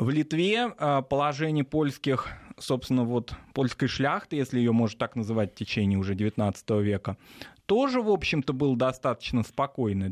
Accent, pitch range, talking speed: native, 100-130 Hz, 140 wpm